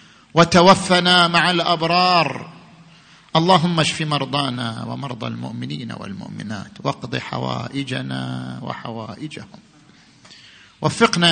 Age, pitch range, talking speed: 50-69, 150-180 Hz, 70 wpm